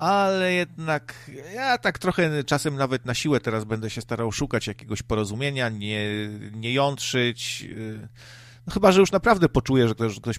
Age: 40-59